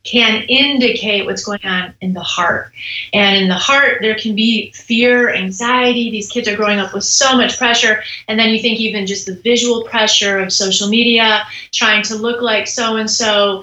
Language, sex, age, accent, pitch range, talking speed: English, female, 30-49, American, 200-235 Hz, 190 wpm